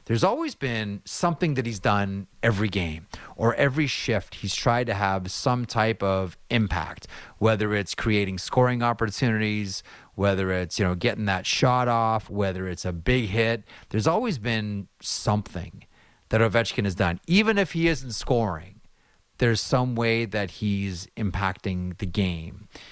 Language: English